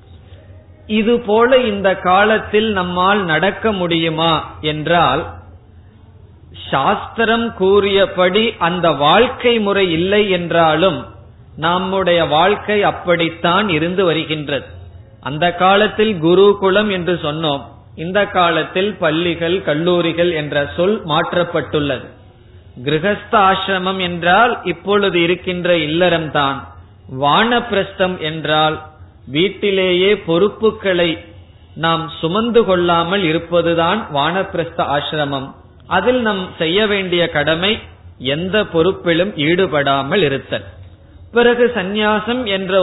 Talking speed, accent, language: 80 wpm, native, Tamil